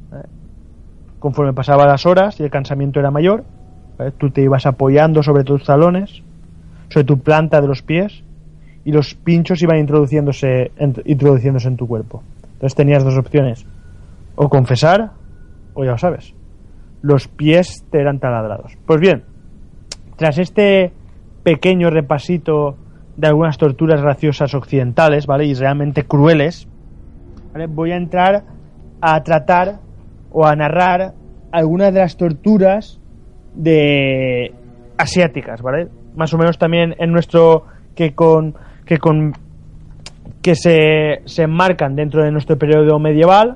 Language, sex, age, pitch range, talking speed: Spanish, male, 20-39, 125-170 Hz, 135 wpm